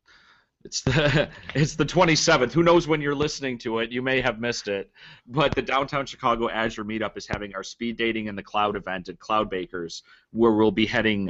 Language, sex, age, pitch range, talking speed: English, male, 30-49, 100-120 Hz, 205 wpm